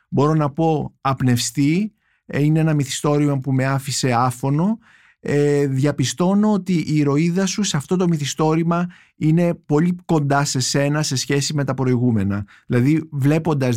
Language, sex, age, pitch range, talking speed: Greek, male, 50-69, 125-170 Hz, 145 wpm